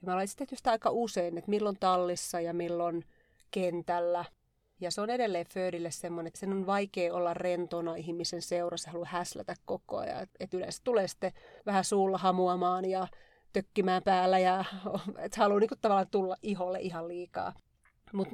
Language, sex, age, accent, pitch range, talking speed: Finnish, female, 30-49, native, 175-210 Hz, 155 wpm